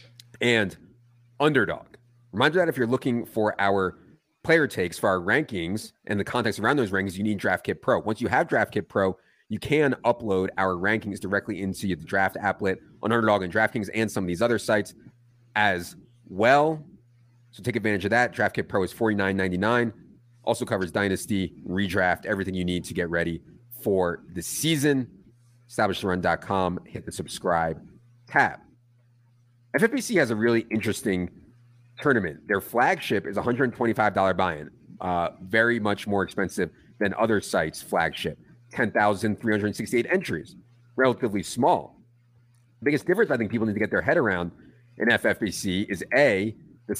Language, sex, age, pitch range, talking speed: English, male, 30-49, 95-120 Hz, 155 wpm